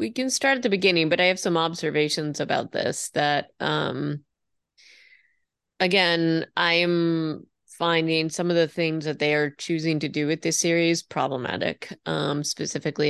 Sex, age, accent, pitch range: female, 30-49, American, 145-170 Hz